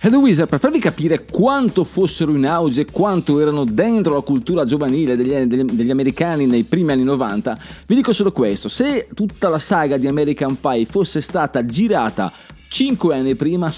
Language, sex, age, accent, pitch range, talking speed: Italian, male, 30-49, native, 130-200 Hz, 180 wpm